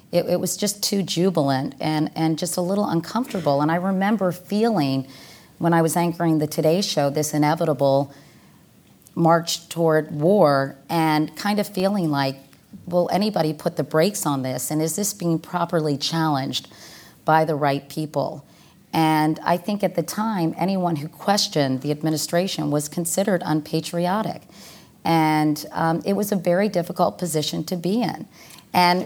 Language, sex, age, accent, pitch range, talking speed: English, female, 40-59, American, 145-175 Hz, 155 wpm